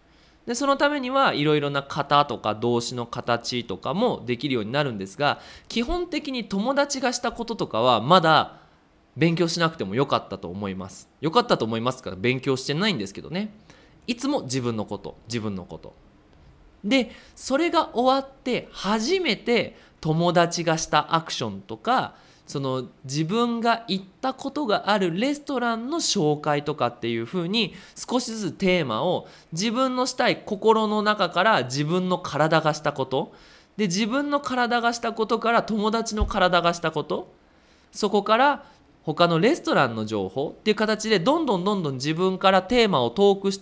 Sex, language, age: male, Japanese, 20-39